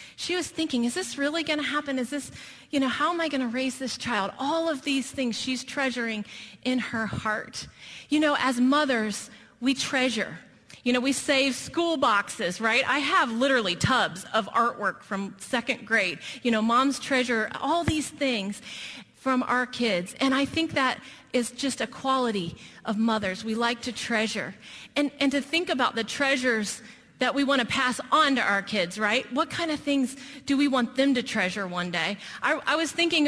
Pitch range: 225-280 Hz